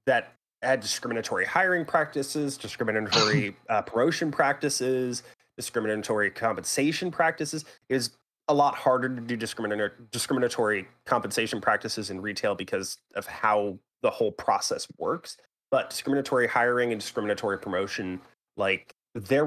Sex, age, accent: male, 30-49, American